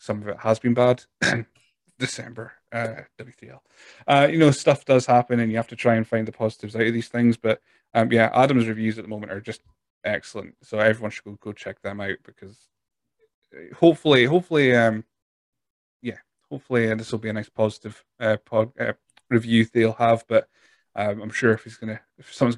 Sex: male